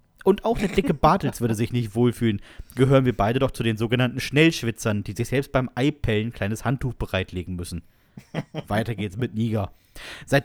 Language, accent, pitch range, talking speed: German, German, 110-140 Hz, 190 wpm